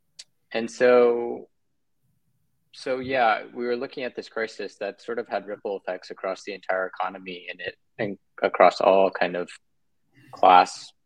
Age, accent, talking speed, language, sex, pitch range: 20-39, American, 150 wpm, English, male, 90-100 Hz